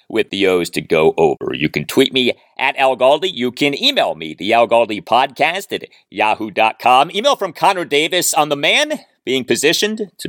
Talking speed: 190 wpm